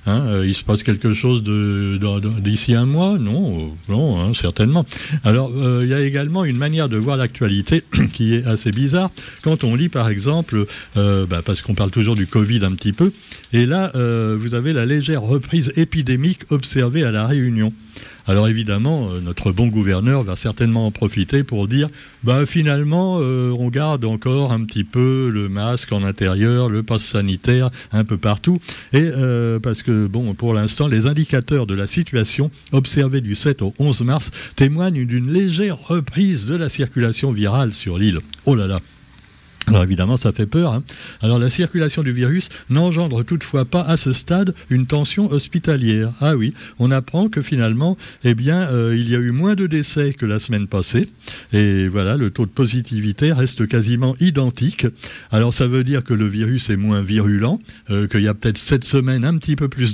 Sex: male